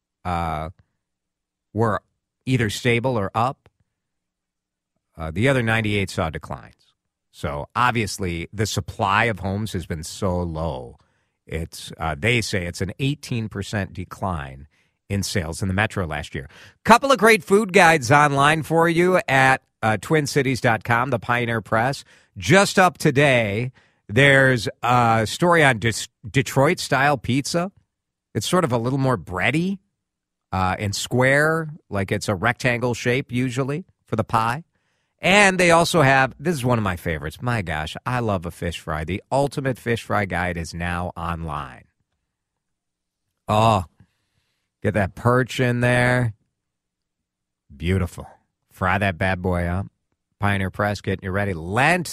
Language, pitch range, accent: English, 95-135 Hz, American